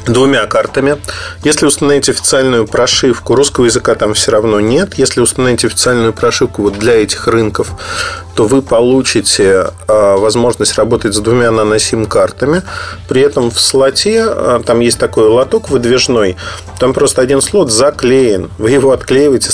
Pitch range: 110-155 Hz